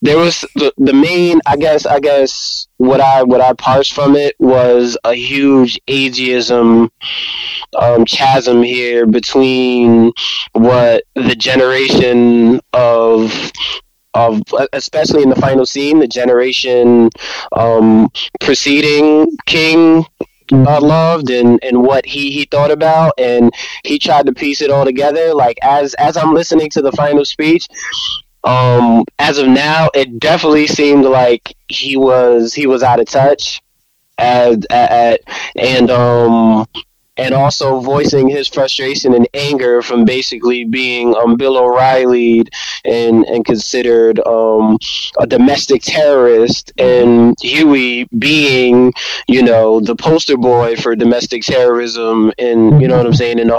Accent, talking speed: American, 140 wpm